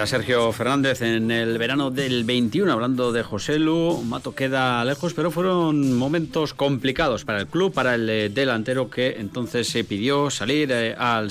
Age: 30-49